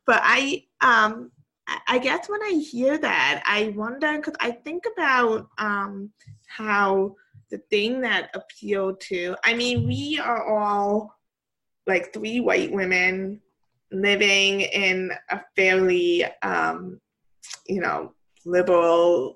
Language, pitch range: English, 180-230 Hz